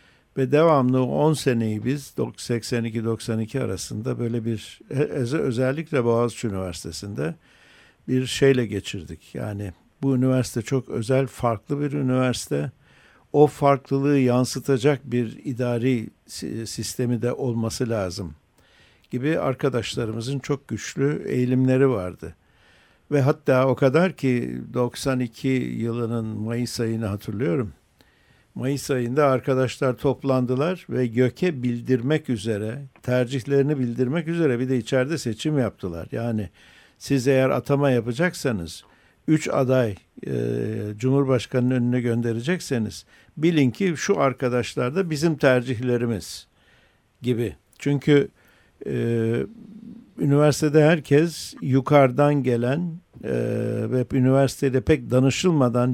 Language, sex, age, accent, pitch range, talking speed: Turkish, male, 60-79, native, 115-140 Hz, 100 wpm